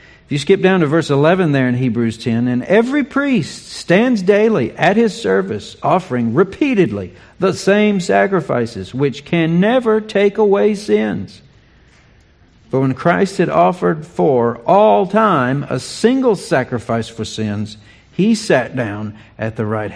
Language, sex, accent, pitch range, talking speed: English, male, American, 105-140 Hz, 145 wpm